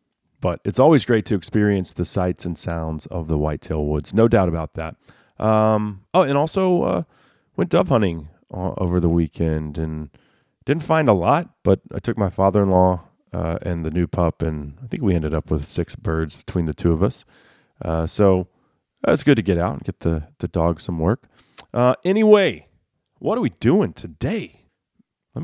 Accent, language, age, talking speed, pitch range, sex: American, English, 30-49, 195 wpm, 85-115 Hz, male